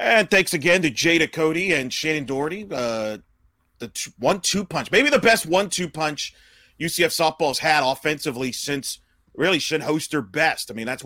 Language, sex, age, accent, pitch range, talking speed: English, male, 40-59, American, 130-175 Hz, 185 wpm